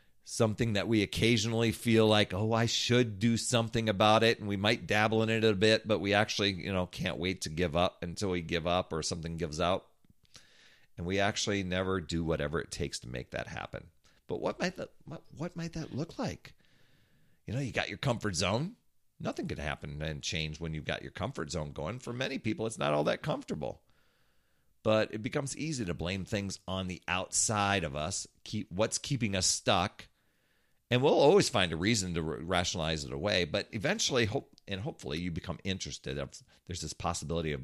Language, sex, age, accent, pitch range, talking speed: English, male, 40-59, American, 85-110 Hz, 205 wpm